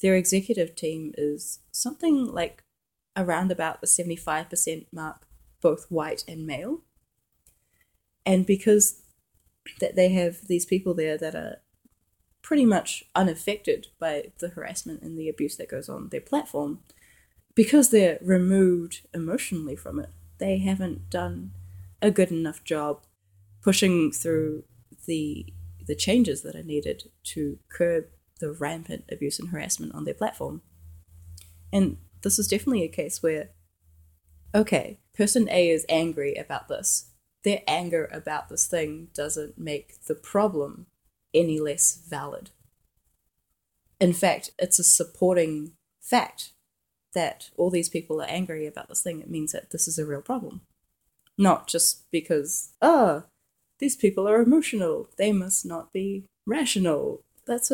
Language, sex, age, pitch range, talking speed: English, female, 20-39, 150-195 Hz, 140 wpm